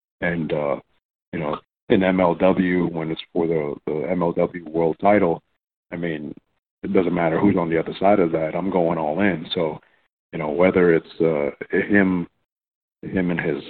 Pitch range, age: 85-95 Hz, 50-69